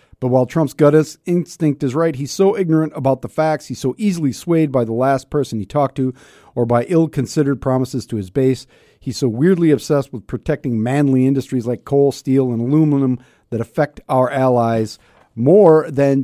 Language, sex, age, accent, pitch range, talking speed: English, male, 40-59, American, 110-135 Hz, 185 wpm